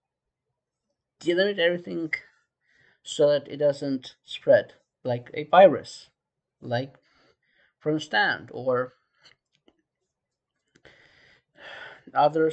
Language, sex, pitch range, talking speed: English, male, 140-175 Hz, 75 wpm